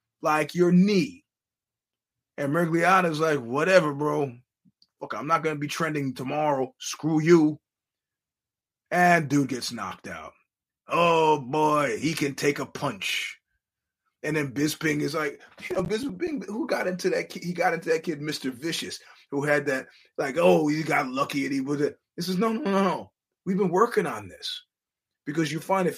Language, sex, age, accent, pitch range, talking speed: English, male, 30-49, American, 145-185 Hz, 180 wpm